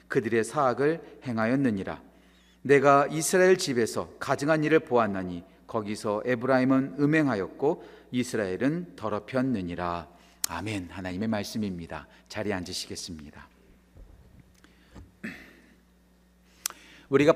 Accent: native